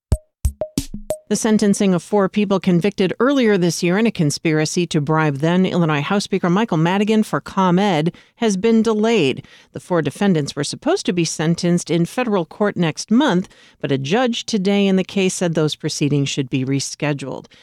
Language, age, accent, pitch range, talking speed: English, 40-59, American, 150-195 Hz, 170 wpm